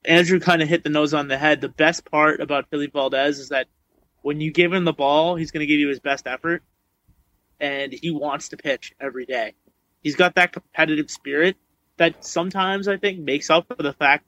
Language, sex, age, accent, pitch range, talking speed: English, male, 20-39, American, 140-165 Hz, 220 wpm